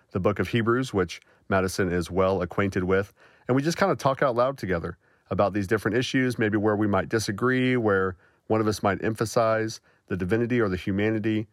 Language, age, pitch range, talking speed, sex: English, 40-59, 90-110 Hz, 205 wpm, male